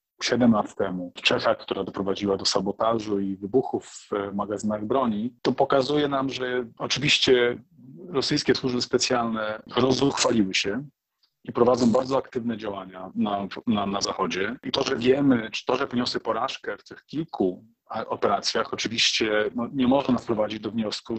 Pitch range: 105-130 Hz